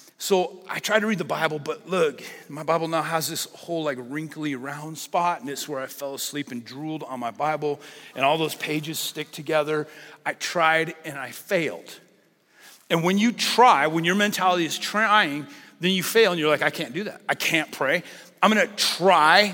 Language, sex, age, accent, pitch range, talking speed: English, male, 40-59, American, 150-195 Hz, 205 wpm